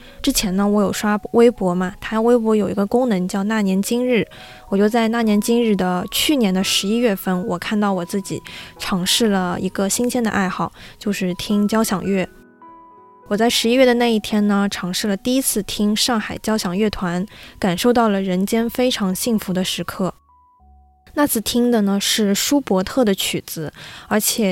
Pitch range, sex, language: 185-225 Hz, female, Chinese